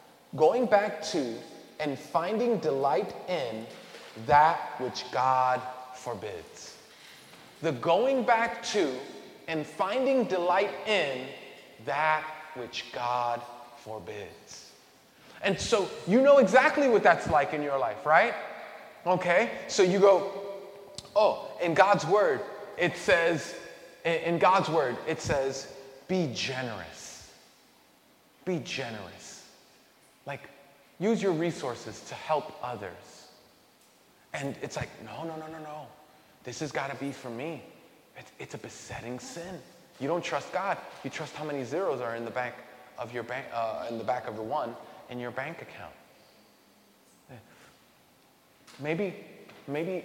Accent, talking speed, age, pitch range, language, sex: American, 130 wpm, 30-49, 125-175 Hz, English, male